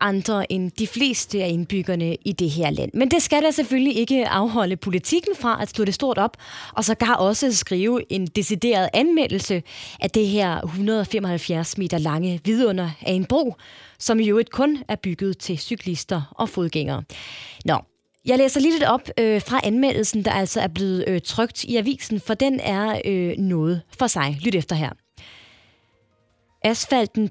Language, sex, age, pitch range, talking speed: Danish, female, 20-39, 175-230 Hz, 170 wpm